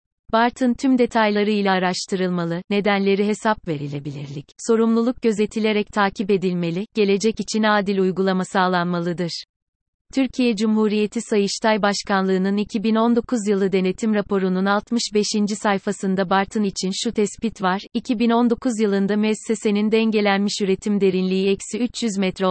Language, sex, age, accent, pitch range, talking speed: Turkish, female, 30-49, native, 190-220 Hz, 110 wpm